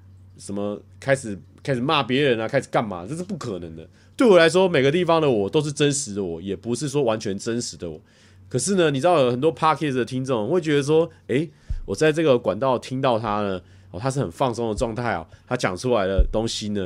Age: 30-49